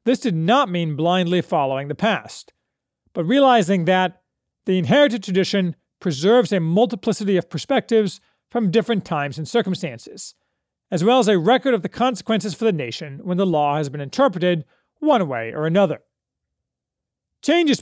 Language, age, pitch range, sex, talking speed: English, 40-59, 170-235 Hz, male, 155 wpm